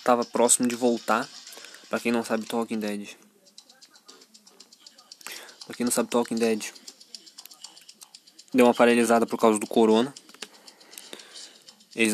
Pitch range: 120-170 Hz